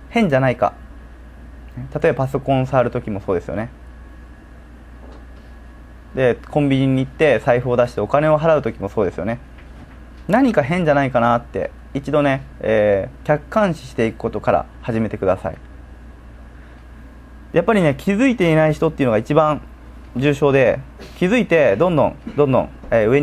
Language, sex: Japanese, male